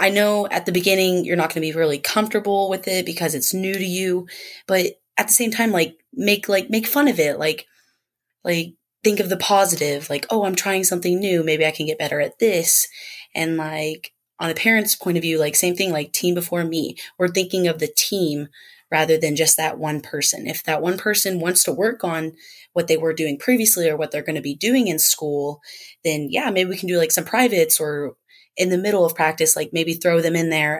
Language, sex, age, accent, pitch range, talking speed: English, female, 20-39, American, 155-195 Hz, 230 wpm